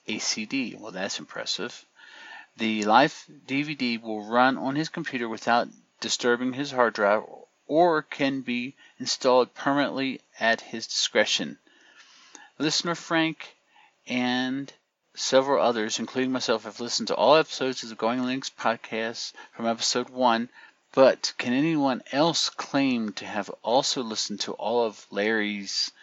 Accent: American